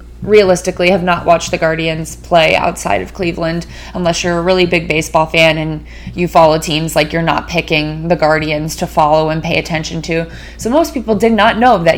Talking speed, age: 200 wpm, 20-39